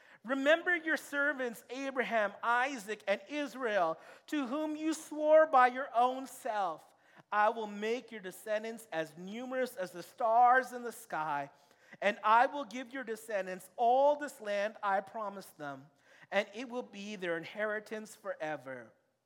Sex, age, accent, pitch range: male, 40-59, American, 190-255 Hz